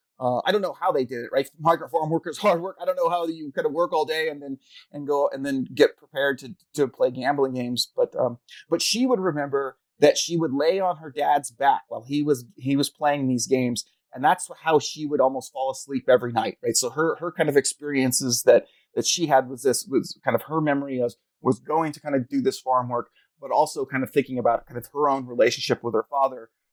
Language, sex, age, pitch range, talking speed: English, male, 30-49, 125-160 Hz, 250 wpm